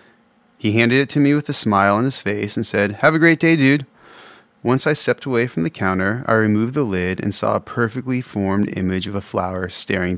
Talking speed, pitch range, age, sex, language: 230 wpm, 100-120 Hz, 30-49, male, English